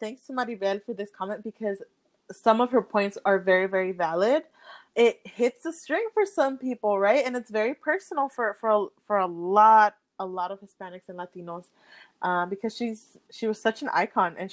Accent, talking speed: American, 200 wpm